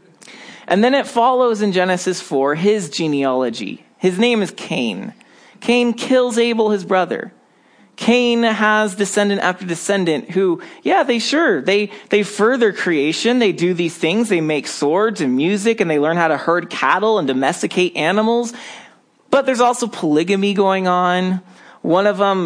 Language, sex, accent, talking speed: English, male, American, 160 wpm